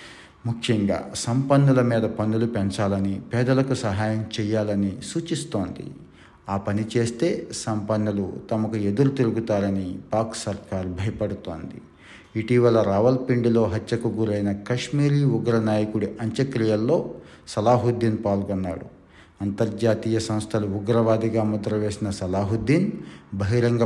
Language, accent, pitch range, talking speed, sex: Telugu, native, 100-120 Hz, 90 wpm, male